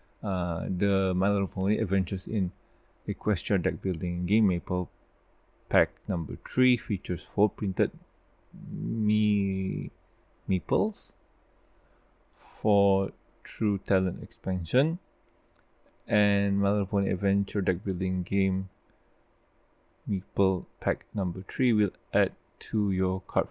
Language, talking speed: English, 95 wpm